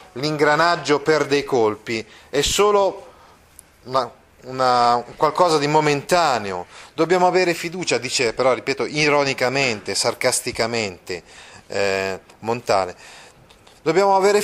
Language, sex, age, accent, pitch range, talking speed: Italian, male, 30-49, native, 110-155 Hz, 95 wpm